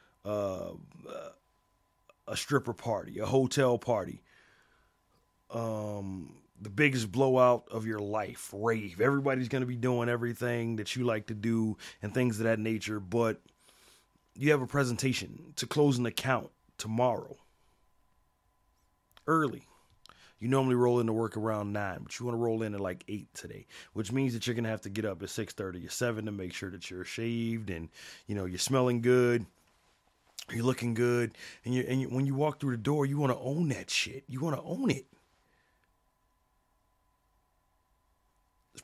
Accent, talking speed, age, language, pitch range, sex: American, 165 wpm, 30-49, English, 95-125 Hz, male